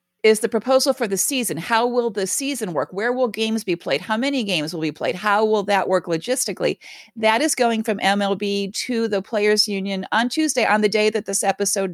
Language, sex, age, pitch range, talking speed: English, female, 40-59, 190-235 Hz, 220 wpm